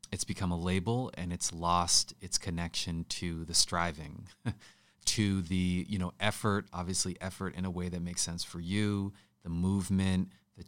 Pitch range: 85-95 Hz